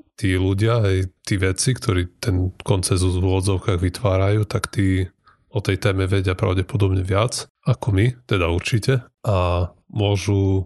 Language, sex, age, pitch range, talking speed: Slovak, male, 30-49, 95-110 Hz, 140 wpm